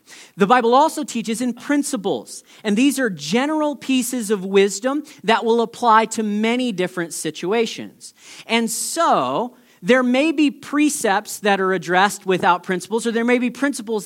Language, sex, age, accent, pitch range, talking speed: English, male, 40-59, American, 195-250 Hz, 155 wpm